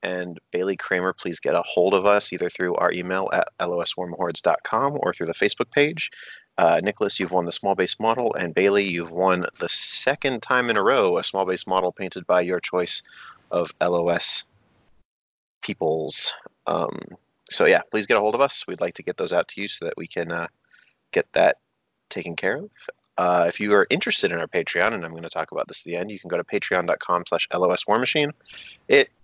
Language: English